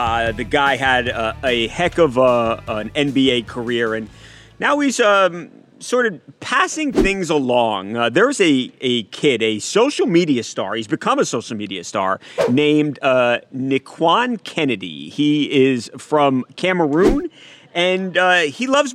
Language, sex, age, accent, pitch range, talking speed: English, male, 30-49, American, 125-180 Hz, 150 wpm